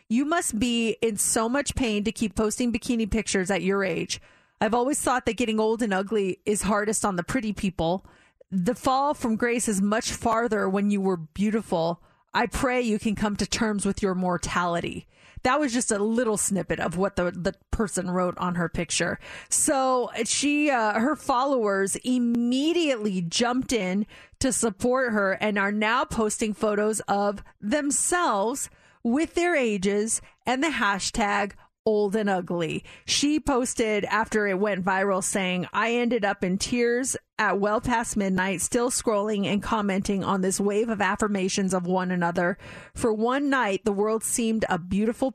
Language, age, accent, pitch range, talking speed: English, 30-49, American, 195-245 Hz, 170 wpm